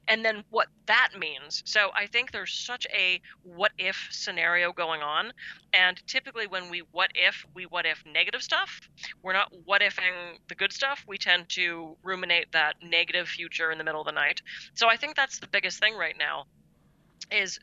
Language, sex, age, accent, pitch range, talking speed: English, female, 30-49, American, 170-220 Hz, 195 wpm